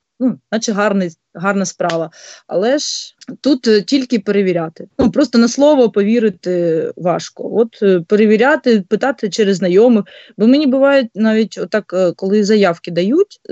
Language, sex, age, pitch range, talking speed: Ukrainian, female, 20-39, 190-250 Hz, 140 wpm